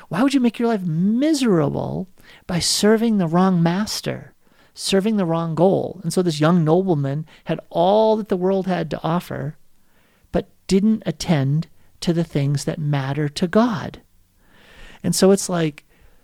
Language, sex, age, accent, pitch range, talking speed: English, male, 40-59, American, 145-185 Hz, 160 wpm